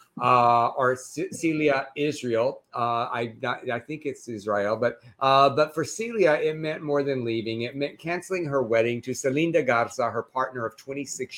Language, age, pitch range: English, 50-69, 115-150 Hz